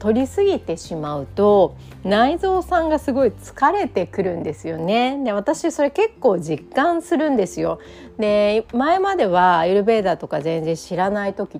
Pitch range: 170-250 Hz